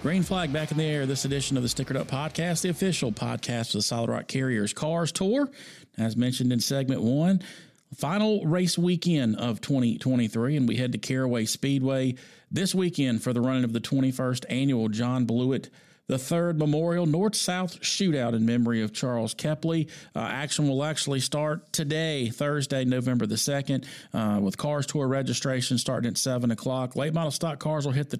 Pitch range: 125-150 Hz